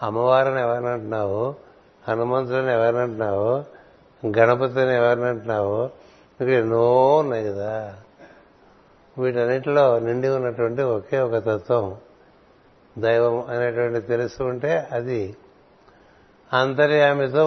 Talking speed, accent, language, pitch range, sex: 65 wpm, native, Telugu, 115-140 Hz, male